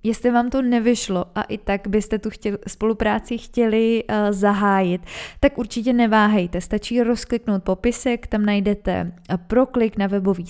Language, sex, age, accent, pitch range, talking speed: Czech, female, 20-39, native, 195-225 Hz, 130 wpm